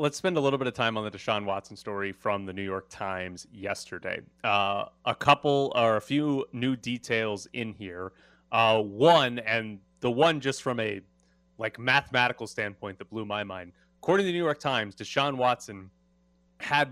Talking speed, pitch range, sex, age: 185 wpm, 100-140 Hz, male, 30-49